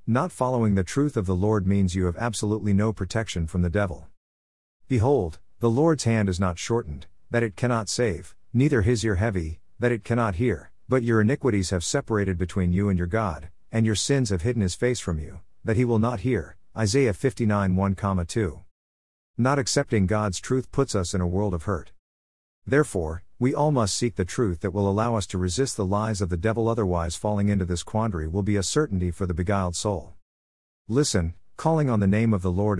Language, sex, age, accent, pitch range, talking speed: English, male, 50-69, American, 90-115 Hz, 205 wpm